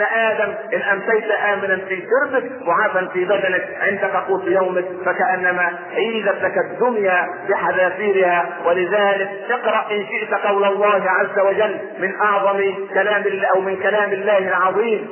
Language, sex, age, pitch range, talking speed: Arabic, male, 50-69, 180-205 Hz, 130 wpm